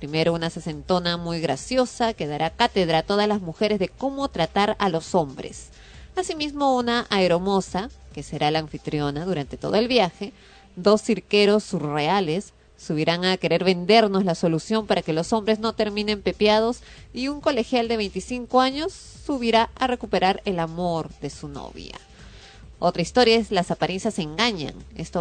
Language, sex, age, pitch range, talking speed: Spanish, female, 30-49, 170-220 Hz, 155 wpm